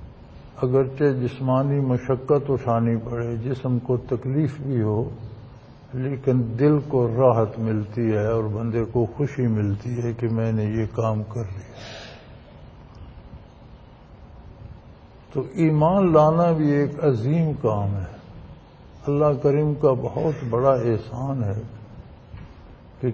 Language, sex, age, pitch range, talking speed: Punjabi, male, 60-79, 115-145 Hz, 120 wpm